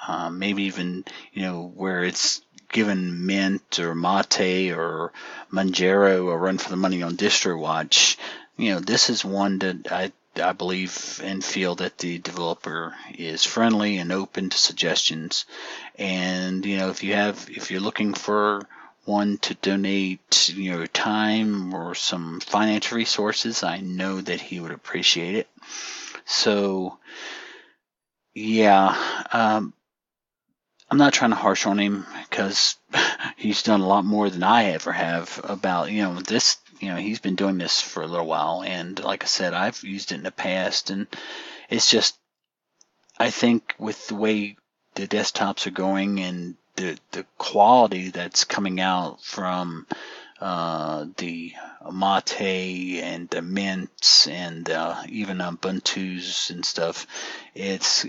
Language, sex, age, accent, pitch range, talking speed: English, male, 40-59, American, 90-105 Hz, 150 wpm